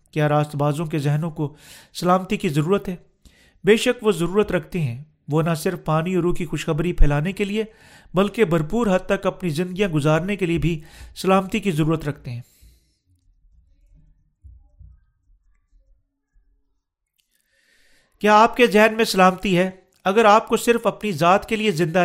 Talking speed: 150 wpm